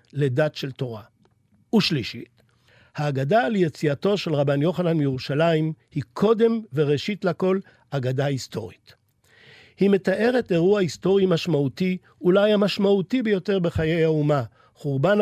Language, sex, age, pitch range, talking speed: Hebrew, male, 50-69, 140-185 Hz, 110 wpm